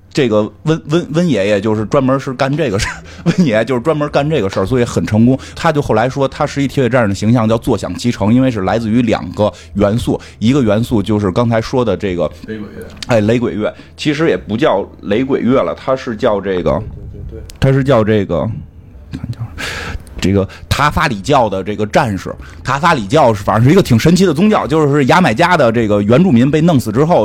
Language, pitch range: Chinese, 105-140 Hz